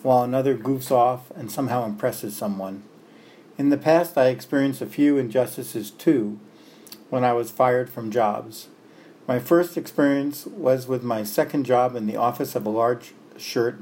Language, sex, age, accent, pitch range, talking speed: English, male, 50-69, American, 115-140 Hz, 165 wpm